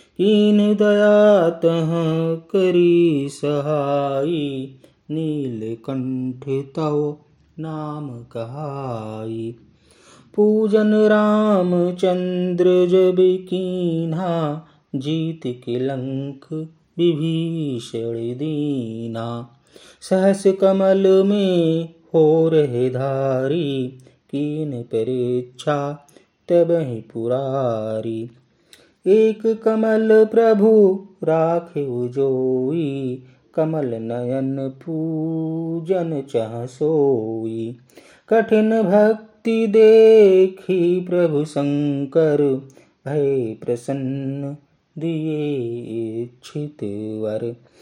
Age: 30-49